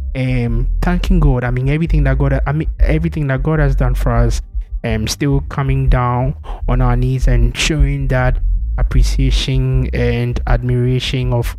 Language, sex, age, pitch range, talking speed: English, male, 20-39, 115-145 Hz, 165 wpm